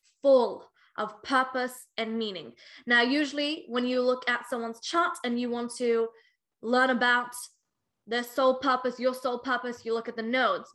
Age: 10-29